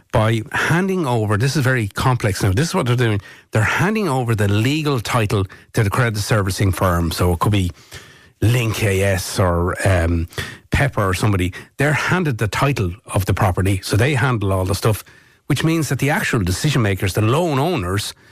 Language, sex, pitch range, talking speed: English, male, 110-140 Hz, 190 wpm